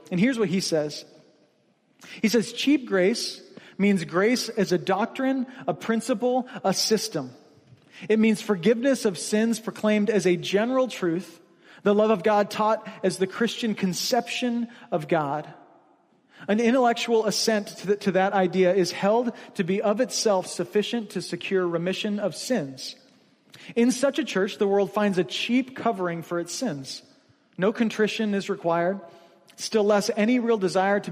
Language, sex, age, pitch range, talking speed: English, male, 40-59, 180-215 Hz, 155 wpm